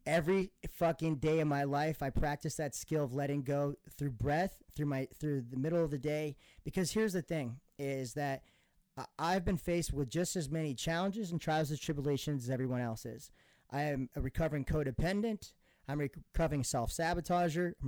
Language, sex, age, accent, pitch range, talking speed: English, male, 30-49, American, 135-165 Hz, 185 wpm